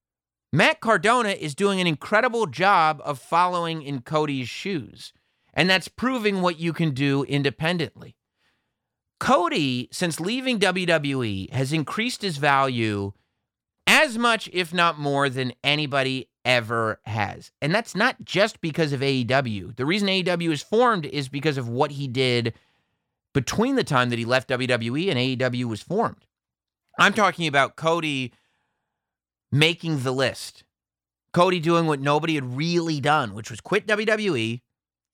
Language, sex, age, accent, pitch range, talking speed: English, male, 30-49, American, 130-180 Hz, 145 wpm